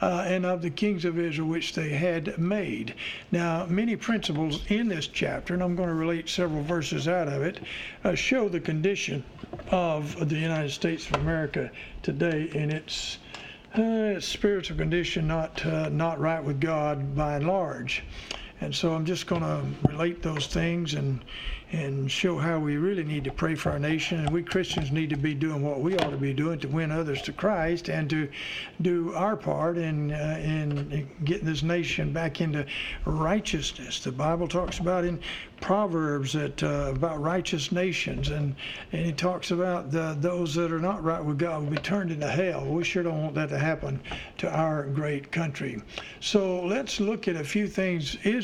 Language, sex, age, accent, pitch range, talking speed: English, male, 60-79, American, 150-180 Hz, 190 wpm